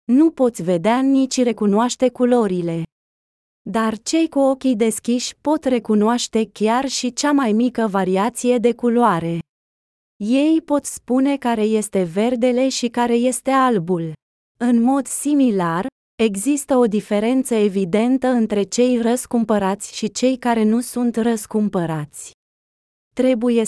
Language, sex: Romanian, female